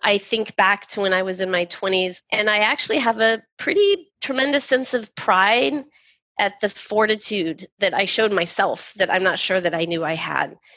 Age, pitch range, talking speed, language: 20-39, 170-205 Hz, 200 wpm, English